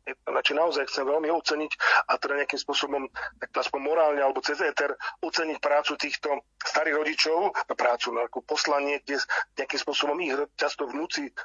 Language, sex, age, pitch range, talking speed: Slovak, male, 40-59, 140-160 Hz, 150 wpm